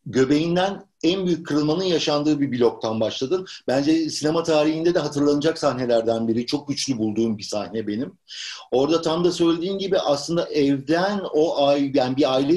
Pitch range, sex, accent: 120-160 Hz, male, native